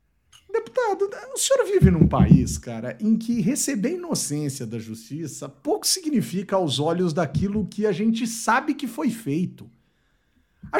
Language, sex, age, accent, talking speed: Portuguese, male, 50-69, Brazilian, 145 wpm